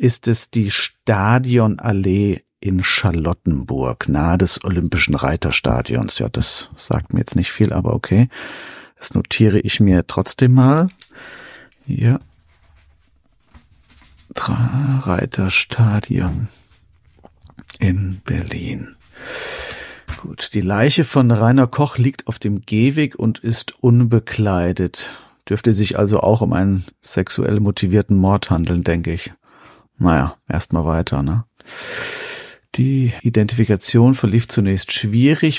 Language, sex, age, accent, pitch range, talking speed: German, male, 50-69, German, 95-120 Hz, 110 wpm